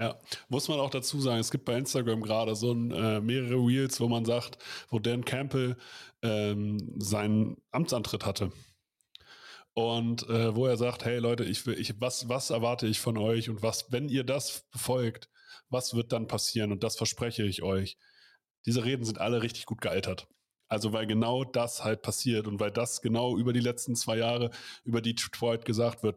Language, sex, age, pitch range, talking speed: German, male, 30-49, 110-130 Hz, 180 wpm